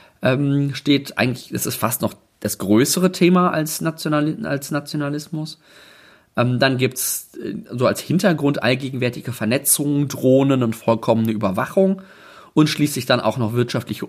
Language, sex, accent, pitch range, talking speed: German, male, German, 120-160 Hz, 130 wpm